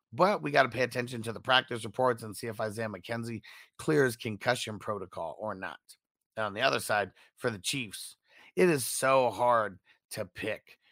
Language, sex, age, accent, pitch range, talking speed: English, male, 30-49, American, 115-150 Hz, 180 wpm